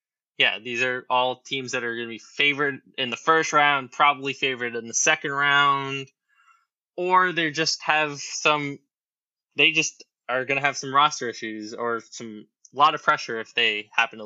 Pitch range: 130-160 Hz